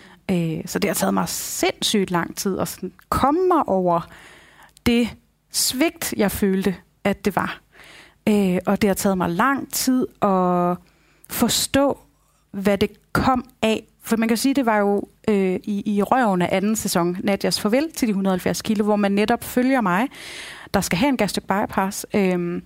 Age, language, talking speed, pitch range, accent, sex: 30-49, Danish, 165 wpm, 195-260 Hz, native, female